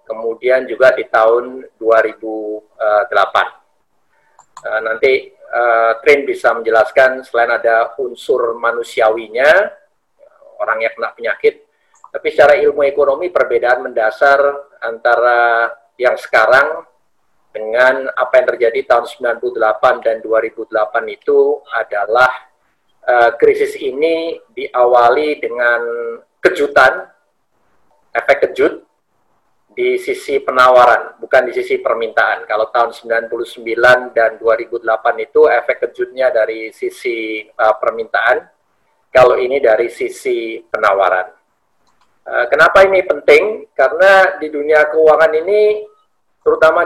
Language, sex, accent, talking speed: Indonesian, male, native, 100 wpm